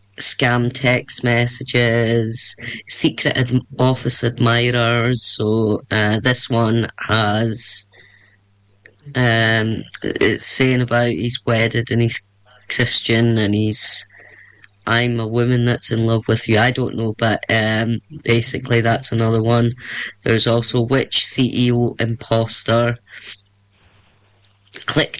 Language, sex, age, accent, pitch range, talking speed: English, female, 20-39, British, 115-135 Hz, 105 wpm